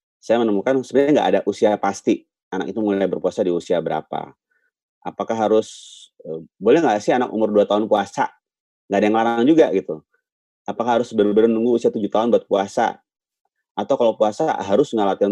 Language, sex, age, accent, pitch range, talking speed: Indonesian, male, 30-49, native, 85-110 Hz, 170 wpm